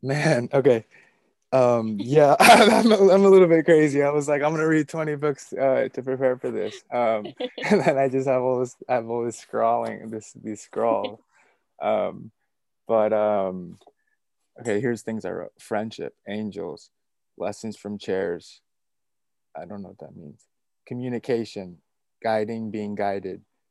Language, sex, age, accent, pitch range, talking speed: English, male, 20-39, American, 105-145 Hz, 150 wpm